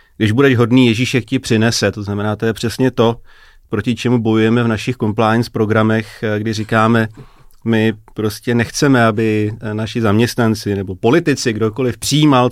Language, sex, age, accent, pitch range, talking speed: Czech, male, 30-49, native, 110-120 Hz, 150 wpm